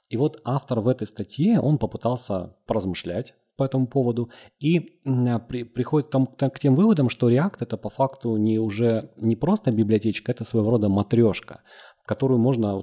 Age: 30-49